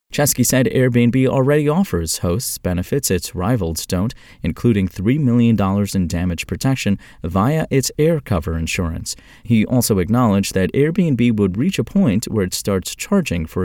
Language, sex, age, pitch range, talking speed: English, male, 30-49, 90-130 Hz, 155 wpm